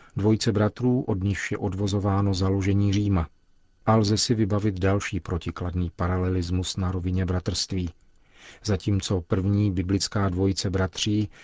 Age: 40-59